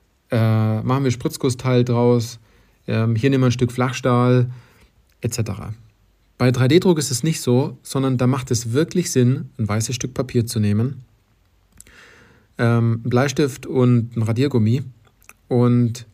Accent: German